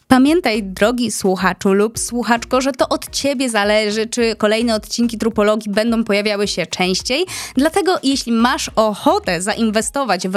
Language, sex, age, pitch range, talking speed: Polish, female, 20-39, 195-245 Hz, 140 wpm